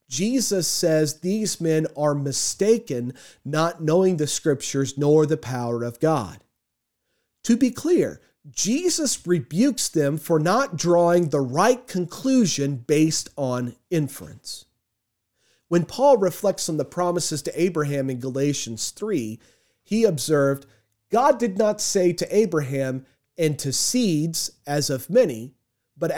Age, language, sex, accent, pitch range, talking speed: 40-59, English, male, American, 135-195 Hz, 130 wpm